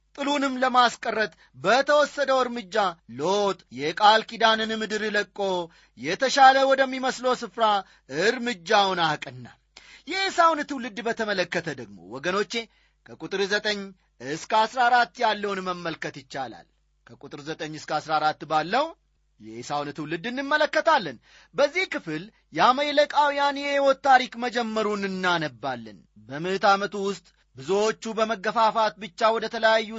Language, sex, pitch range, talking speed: Amharic, male, 180-250 Hz, 100 wpm